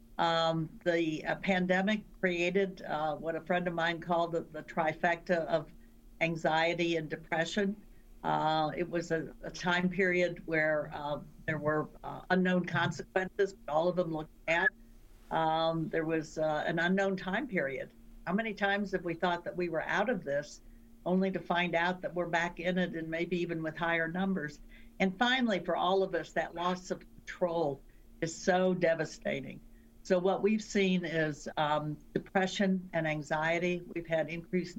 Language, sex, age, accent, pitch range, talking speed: English, female, 60-79, American, 155-180 Hz, 170 wpm